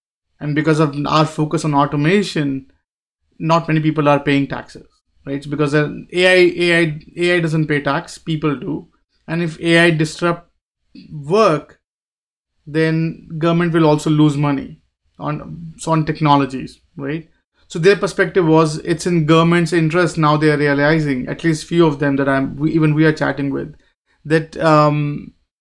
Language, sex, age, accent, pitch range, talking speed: English, male, 30-49, Indian, 140-170 Hz, 155 wpm